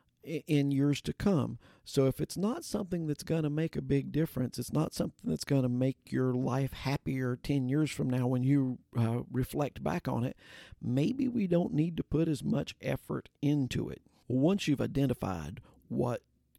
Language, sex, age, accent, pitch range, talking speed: English, male, 50-69, American, 115-135 Hz, 190 wpm